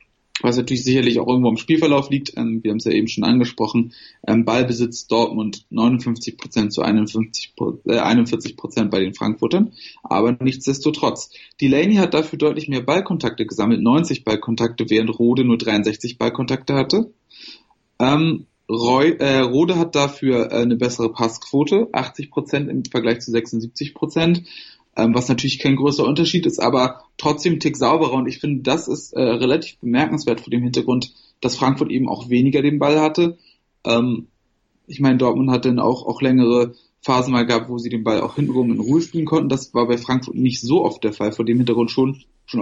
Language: German